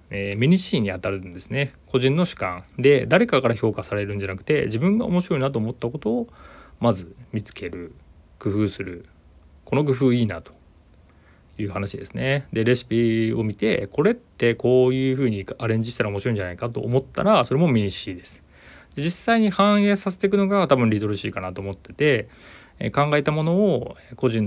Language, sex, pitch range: Japanese, male, 100-130 Hz